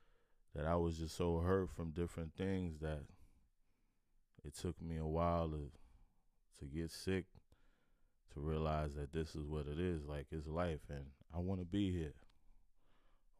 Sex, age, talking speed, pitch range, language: male, 20-39, 160 wpm, 80-90 Hz, English